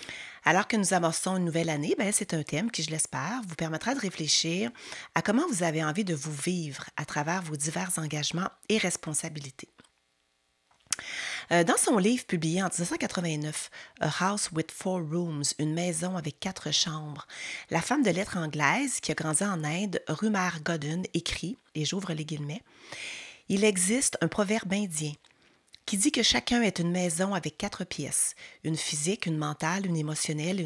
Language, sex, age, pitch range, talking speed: French, female, 30-49, 155-195 Hz, 170 wpm